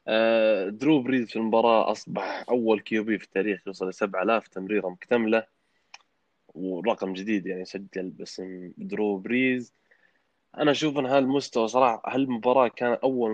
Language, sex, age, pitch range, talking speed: Arabic, male, 20-39, 100-120 Hz, 135 wpm